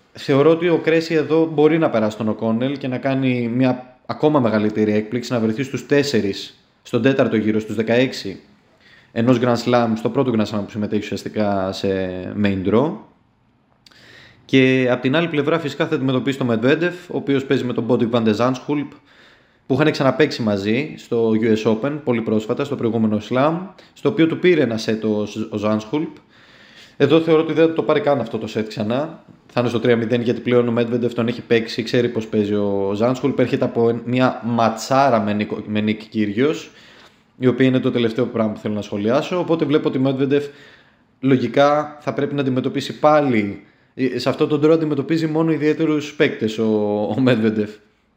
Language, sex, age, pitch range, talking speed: Greek, male, 20-39, 110-135 Hz, 170 wpm